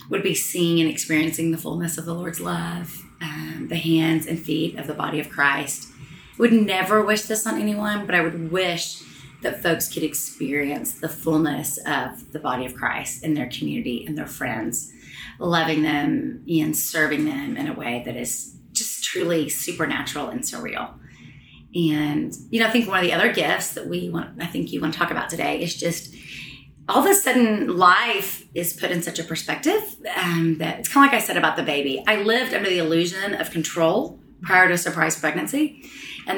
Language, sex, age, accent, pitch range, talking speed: English, female, 30-49, American, 155-200 Hz, 200 wpm